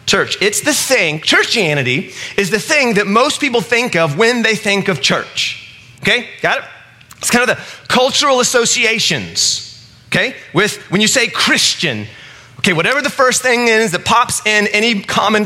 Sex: male